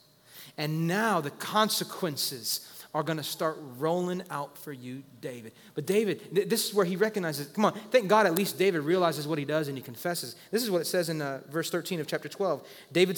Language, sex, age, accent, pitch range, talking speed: English, male, 30-49, American, 170-220 Hz, 215 wpm